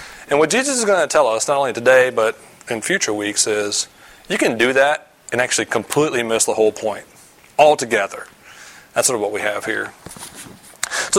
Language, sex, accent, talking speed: English, male, American, 195 wpm